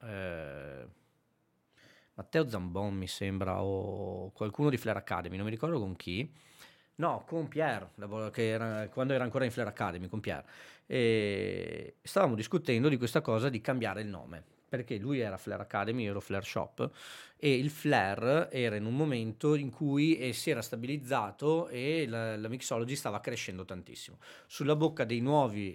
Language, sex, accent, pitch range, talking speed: Italian, male, native, 105-140 Hz, 160 wpm